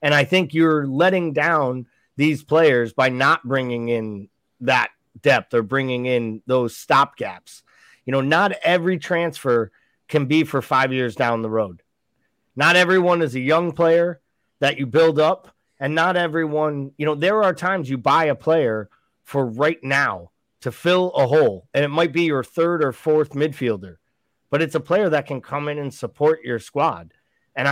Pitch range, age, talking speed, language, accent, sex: 130-170 Hz, 30-49, 180 wpm, English, American, male